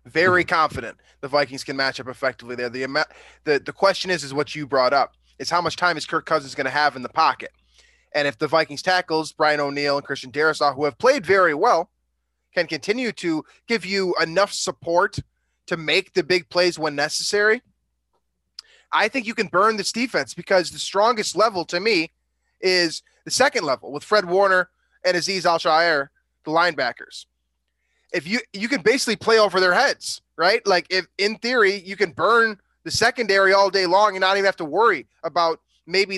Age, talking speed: 20-39, 195 wpm